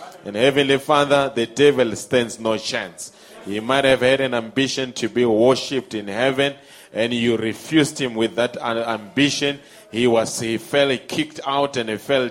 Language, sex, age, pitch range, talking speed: English, male, 30-49, 125-150 Hz, 175 wpm